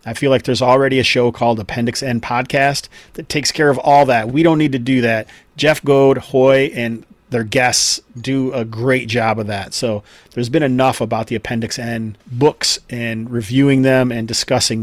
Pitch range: 115-135 Hz